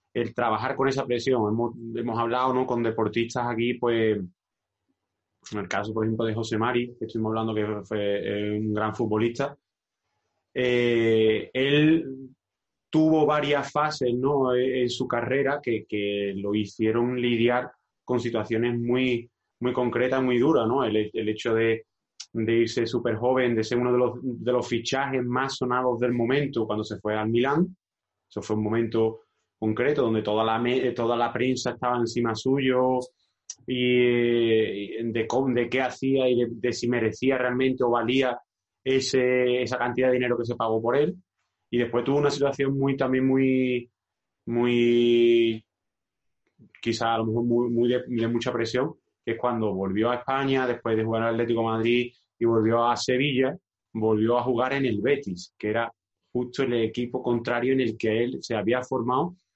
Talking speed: 165 wpm